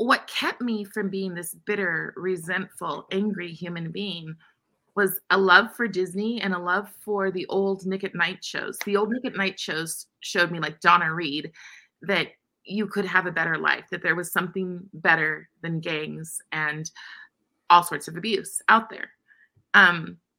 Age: 20-39